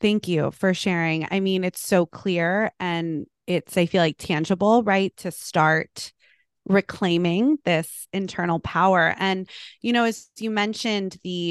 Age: 20-39